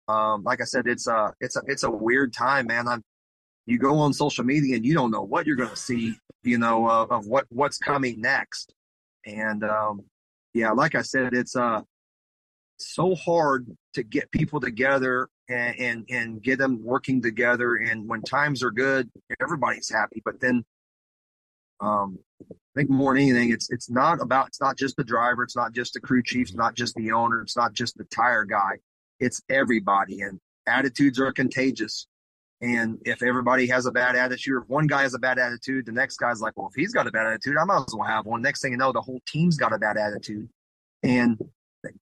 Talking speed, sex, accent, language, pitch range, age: 210 wpm, male, American, English, 115-135 Hz, 30-49